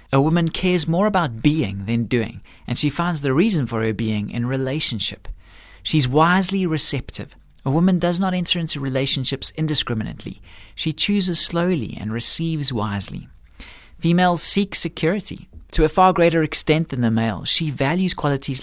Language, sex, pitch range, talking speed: English, male, 120-170 Hz, 160 wpm